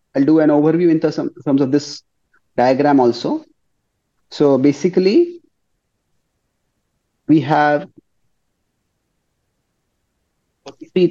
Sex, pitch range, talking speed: male, 145-215 Hz, 80 wpm